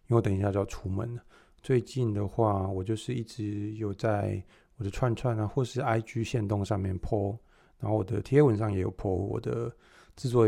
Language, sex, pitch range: Chinese, male, 95-115 Hz